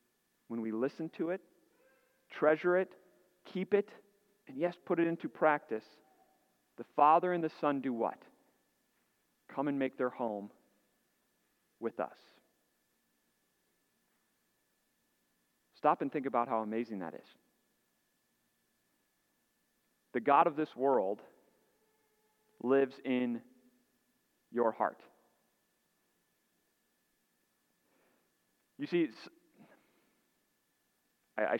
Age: 40-59